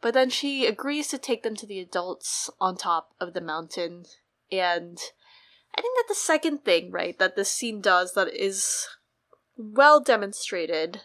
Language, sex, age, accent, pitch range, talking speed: English, female, 20-39, American, 185-245 Hz, 170 wpm